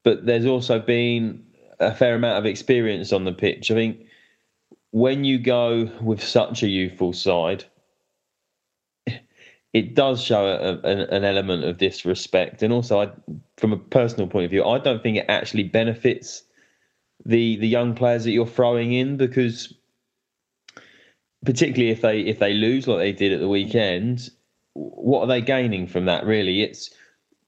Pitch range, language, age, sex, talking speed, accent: 100-120 Hz, English, 20-39, male, 155 wpm, British